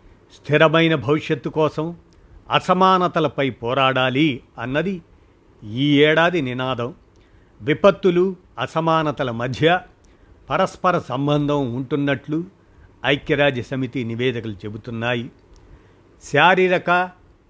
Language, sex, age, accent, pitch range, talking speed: Telugu, male, 50-69, native, 115-160 Hz, 70 wpm